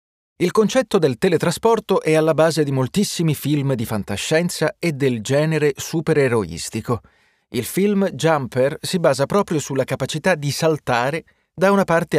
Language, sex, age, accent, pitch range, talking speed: Italian, male, 30-49, native, 120-185 Hz, 145 wpm